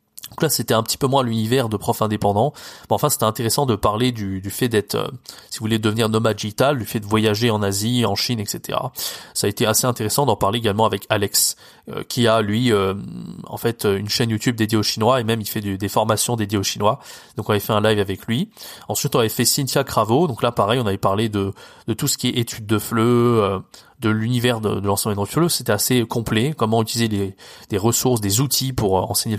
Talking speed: 235 wpm